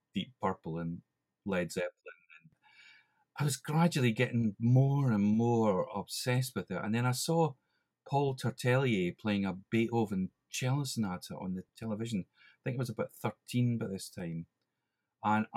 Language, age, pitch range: English, 40-59, 105-140 Hz